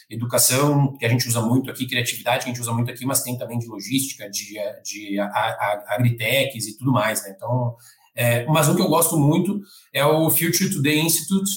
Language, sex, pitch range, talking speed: Portuguese, male, 125-155 Hz, 215 wpm